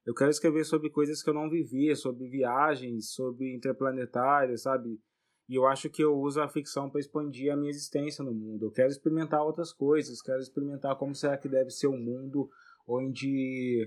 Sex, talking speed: male, 190 wpm